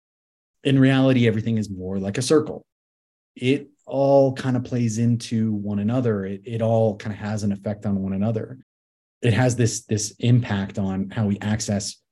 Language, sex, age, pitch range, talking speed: English, male, 30-49, 100-120 Hz, 180 wpm